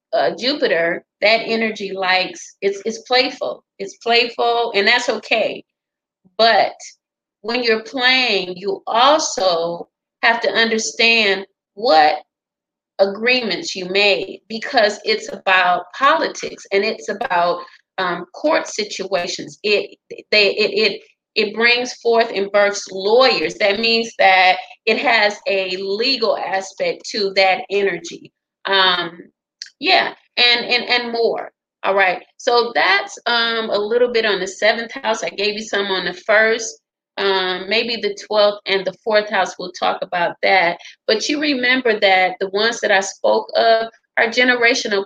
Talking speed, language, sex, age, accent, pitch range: 140 wpm, English, female, 30-49, American, 195-235 Hz